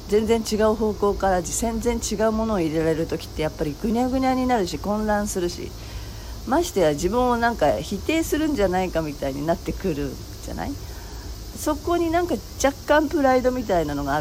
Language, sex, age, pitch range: Japanese, female, 40-59, 150-235 Hz